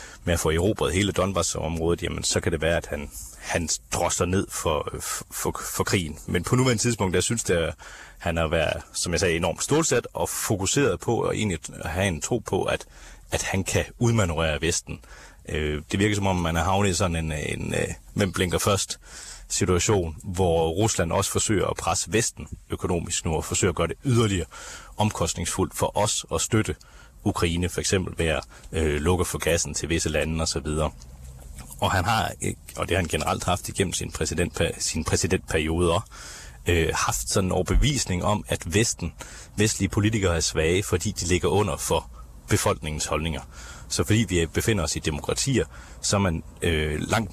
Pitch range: 80-100 Hz